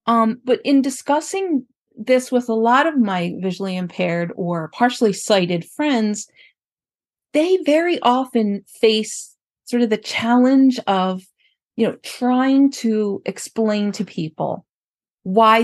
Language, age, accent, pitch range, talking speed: English, 40-59, American, 190-250 Hz, 125 wpm